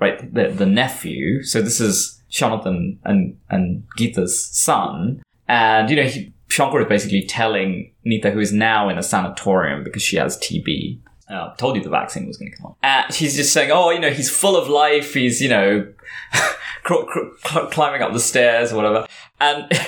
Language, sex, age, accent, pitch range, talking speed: English, male, 20-39, British, 110-165 Hz, 185 wpm